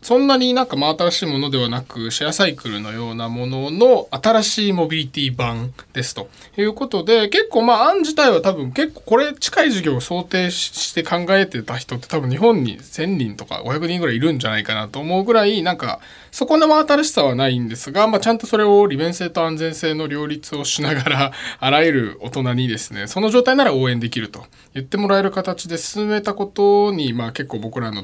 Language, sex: Japanese, male